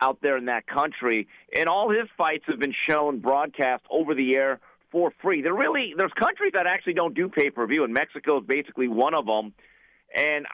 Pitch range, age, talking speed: 135-165 Hz, 40-59, 210 wpm